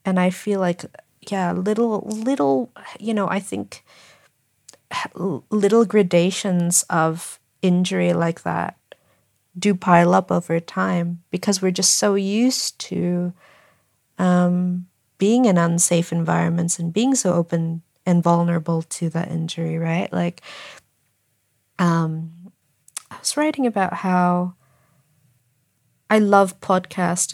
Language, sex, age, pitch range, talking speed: English, female, 40-59, 165-190 Hz, 115 wpm